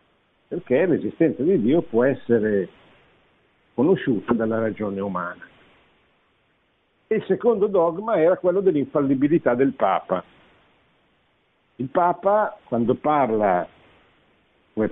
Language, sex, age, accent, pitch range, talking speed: Italian, male, 50-69, native, 120-155 Hz, 95 wpm